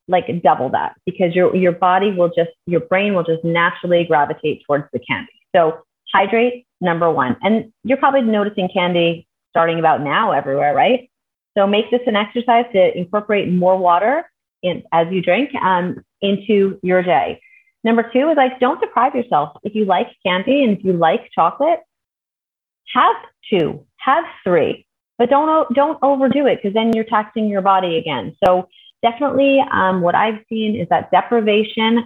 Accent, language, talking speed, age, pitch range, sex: American, English, 165 wpm, 30-49, 175-245 Hz, female